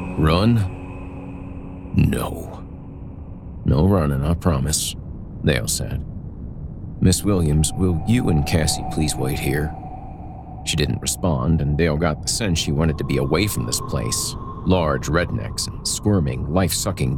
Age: 50-69